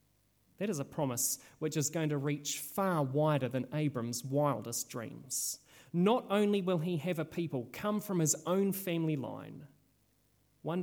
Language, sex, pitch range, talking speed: English, male, 130-165 Hz, 160 wpm